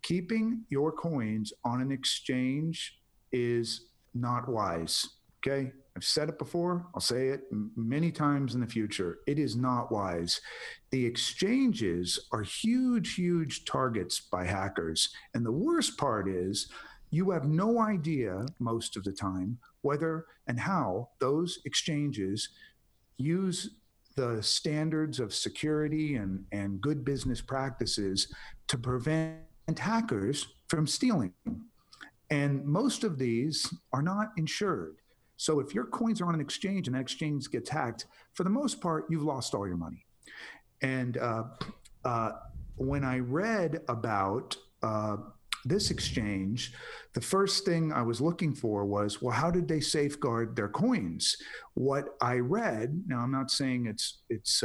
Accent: American